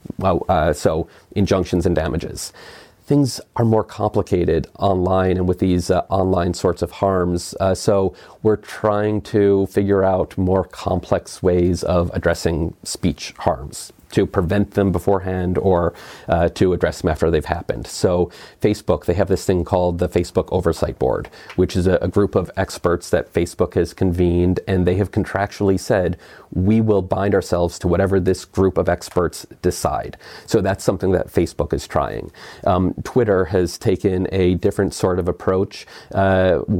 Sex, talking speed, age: male, 165 wpm, 40-59